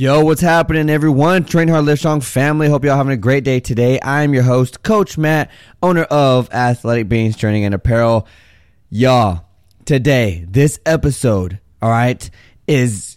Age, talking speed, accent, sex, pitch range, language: 20-39, 160 wpm, American, male, 105-150 Hz, English